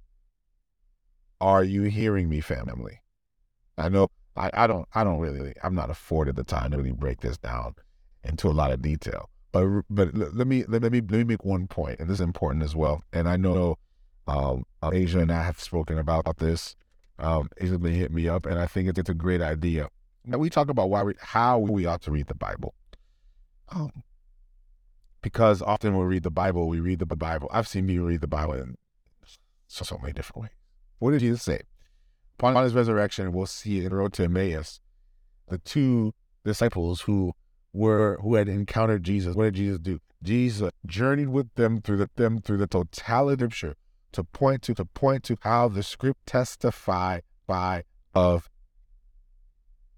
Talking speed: 185 wpm